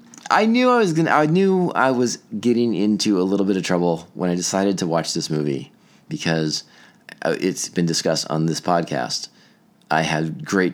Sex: male